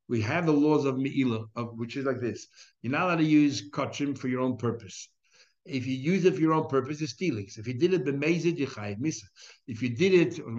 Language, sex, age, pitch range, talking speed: English, male, 60-79, 120-170 Hz, 240 wpm